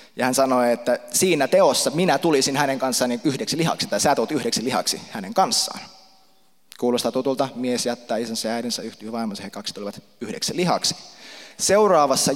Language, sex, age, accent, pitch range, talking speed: Finnish, male, 20-39, native, 125-190 Hz, 170 wpm